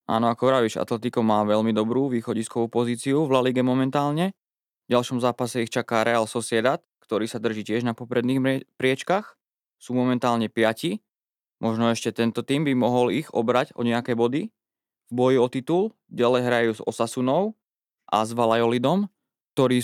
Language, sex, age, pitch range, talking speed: Slovak, male, 20-39, 115-135 Hz, 160 wpm